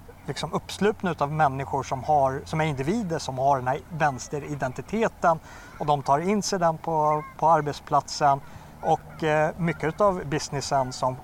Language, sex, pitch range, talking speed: Swedish, male, 135-160 Hz, 155 wpm